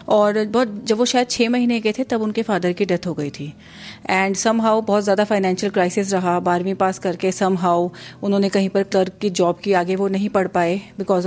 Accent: native